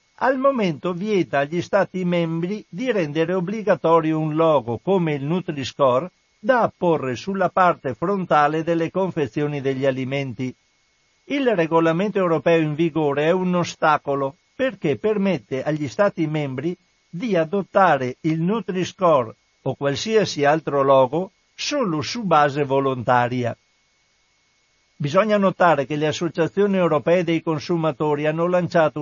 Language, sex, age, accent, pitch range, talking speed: Italian, male, 60-79, native, 145-185 Hz, 120 wpm